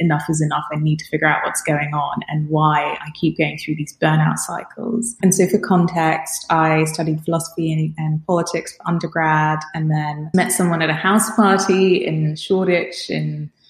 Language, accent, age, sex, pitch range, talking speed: English, British, 20-39, female, 155-180 Hz, 195 wpm